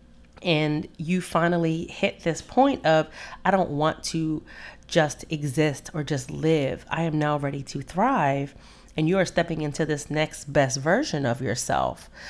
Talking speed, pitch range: 160 wpm, 150-180 Hz